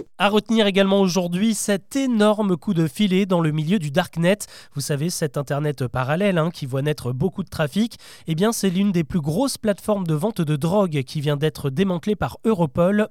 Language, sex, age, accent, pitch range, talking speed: French, male, 20-39, French, 155-210 Hz, 200 wpm